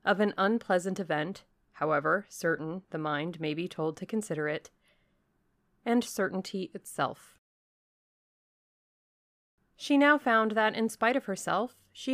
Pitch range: 175-225 Hz